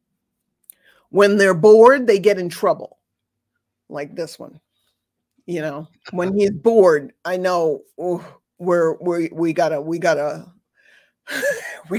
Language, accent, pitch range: English, American, 185-260 Hz